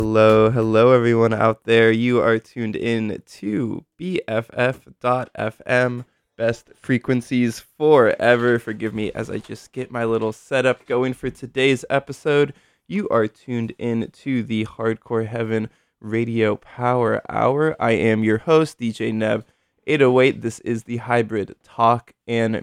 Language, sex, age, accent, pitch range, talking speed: English, male, 20-39, American, 110-130 Hz, 135 wpm